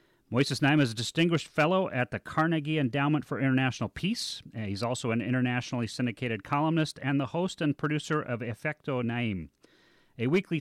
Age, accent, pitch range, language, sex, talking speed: 40-59, American, 115-145 Hz, English, male, 165 wpm